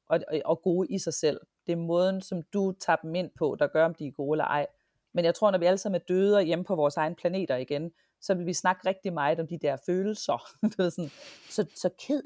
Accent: native